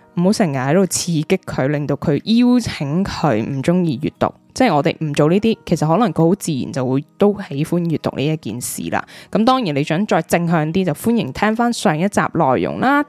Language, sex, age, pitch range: Chinese, female, 10-29, 155-210 Hz